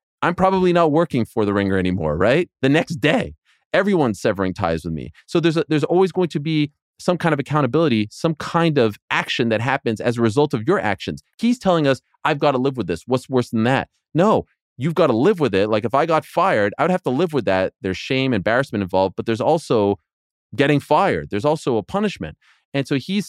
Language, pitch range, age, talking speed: English, 110-160 Hz, 30-49, 230 wpm